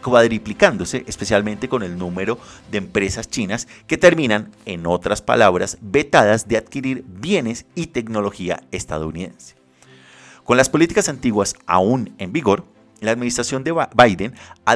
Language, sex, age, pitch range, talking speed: Spanish, male, 30-49, 95-140 Hz, 130 wpm